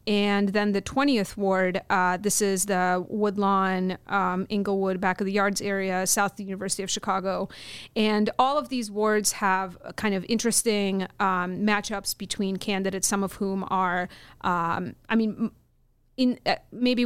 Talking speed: 160 wpm